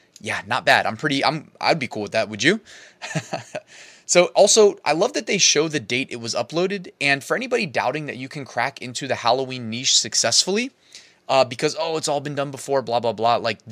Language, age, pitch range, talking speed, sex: English, 20-39, 125-175 Hz, 230 wpm, male